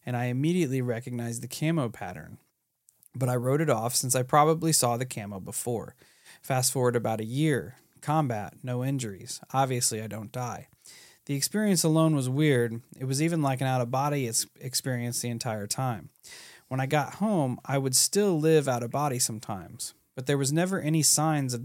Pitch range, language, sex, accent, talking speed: 120-155 Hz, English, male, American, 175 wpm